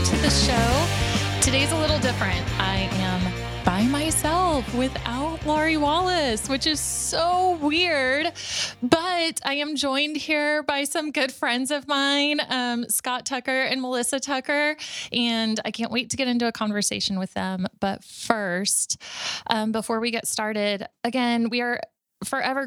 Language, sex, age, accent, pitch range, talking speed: English, female, 20-39, American, 200-265 Hz, 150 wpm